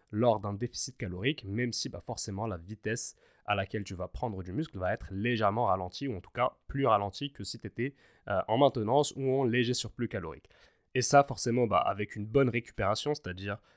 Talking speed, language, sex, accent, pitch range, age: 210 wpm, French, male, French, 105-135 Hz, 20-39